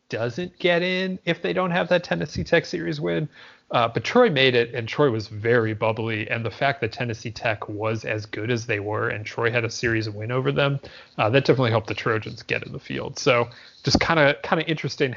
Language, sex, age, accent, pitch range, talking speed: English, male, 30-49, American, 115-145 Hz, 235 wpm